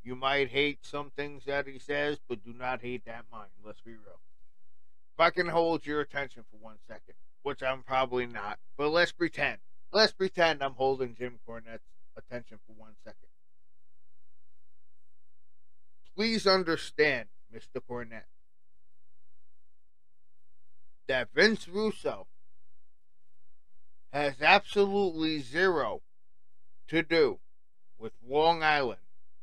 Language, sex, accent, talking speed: English, male, American, 120 wpm